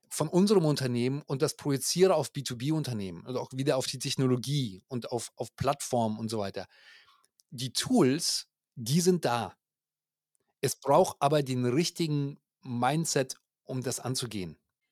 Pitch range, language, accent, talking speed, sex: 125-150 Hz, German, German, 140 wpm, male